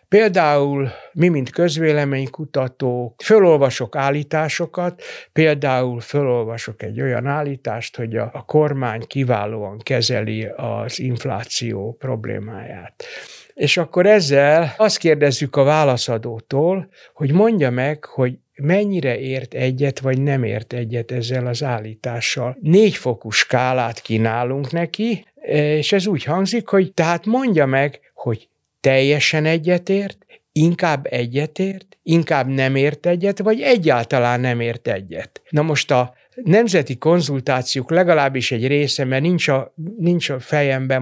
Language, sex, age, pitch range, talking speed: Hungarian, male, 60-79, 125-170 Hz, 120 wpm